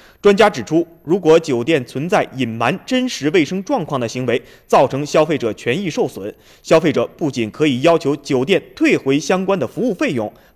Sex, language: male, Chinese